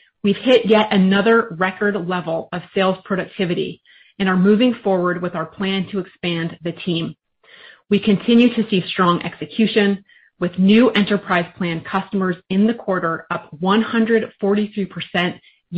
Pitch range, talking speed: 175-210 Hz, 135 wpm